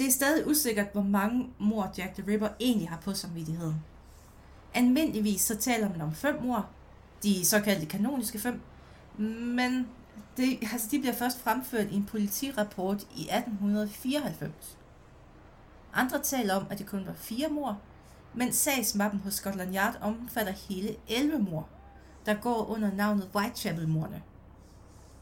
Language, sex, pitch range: Danish, female, 180-240 Hz